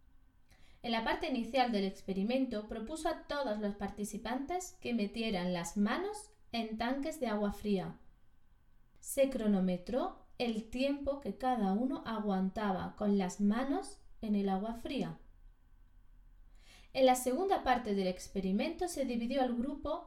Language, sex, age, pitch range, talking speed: Spanish, female, 20-39, 190-260 Hz, 135 wpm